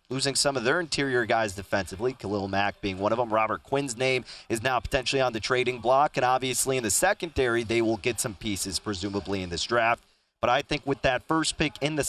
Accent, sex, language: American, male, English